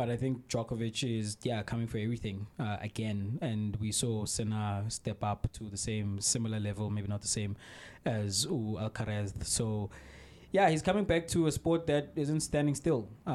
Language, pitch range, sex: English, 110-135 Hz, male